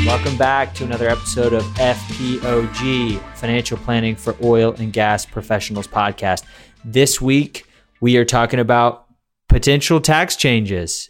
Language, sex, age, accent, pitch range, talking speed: English, male, 20-39, American, 110-125 Hz, 130 wpm